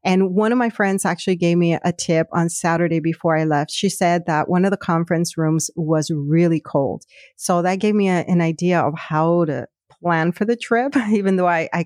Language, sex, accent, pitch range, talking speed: English, female, American, 165-200 Hz, 225 wpm